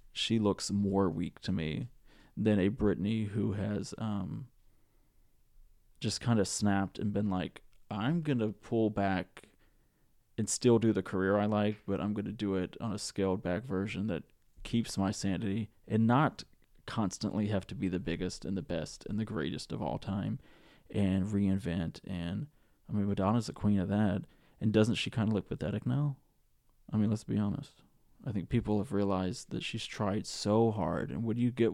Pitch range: 100-115 Hz